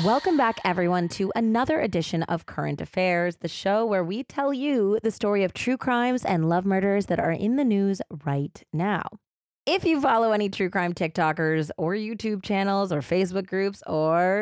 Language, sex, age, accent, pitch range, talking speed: English, female, 30-49, American, 160-220 Hz, 185 wpm